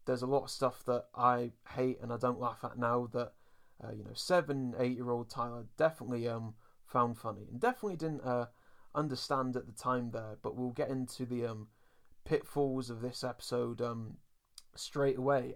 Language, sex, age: English, male, 30-49